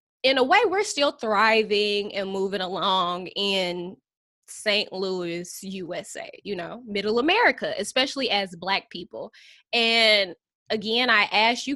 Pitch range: 195-265 Hz